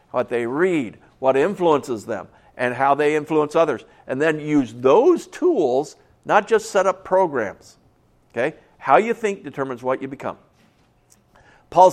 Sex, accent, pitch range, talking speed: male, American, 130-190 Hz, 145 wpm